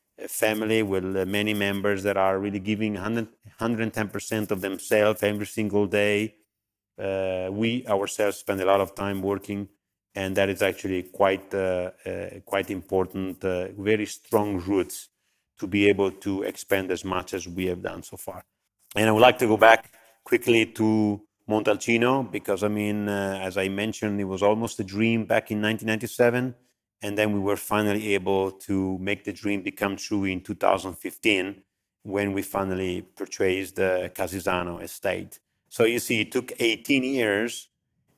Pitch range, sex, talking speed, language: 100-110 Hz, male, 160 wpm, English